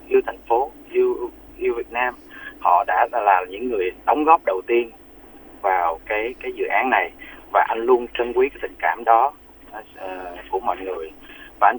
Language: Vietnamese